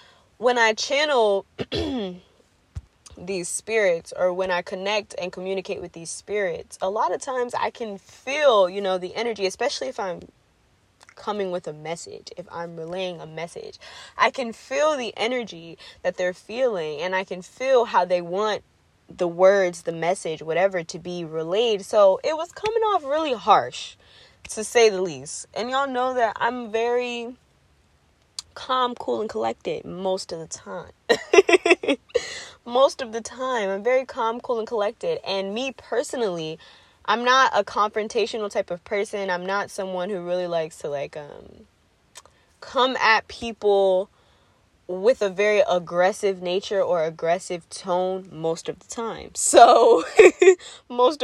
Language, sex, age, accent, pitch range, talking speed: English, female, 20-39, American, 180-255 Hz, 155 wpm